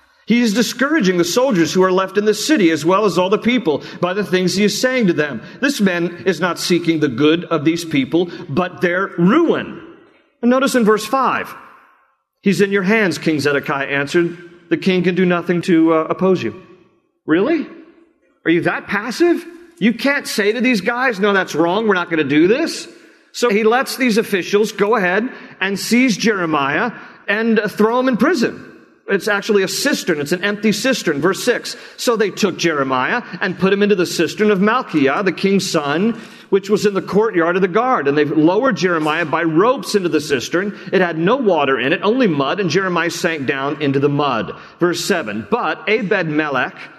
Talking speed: 200 wpm